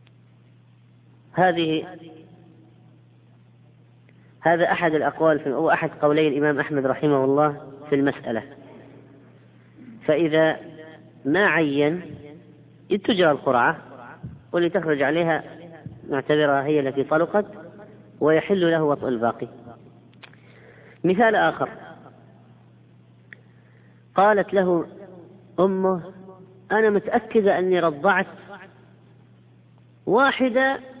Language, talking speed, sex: Arabic, 75 wpm, female